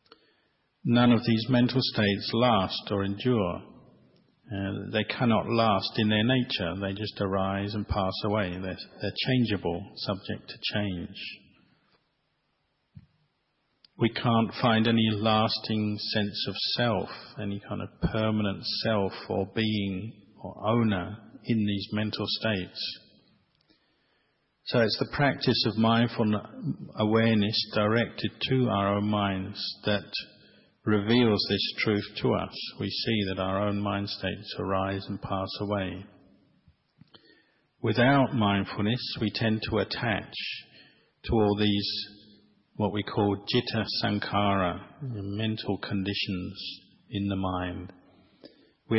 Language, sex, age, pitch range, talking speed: English, male, 50-69, 100-110 Hz, 120 wpm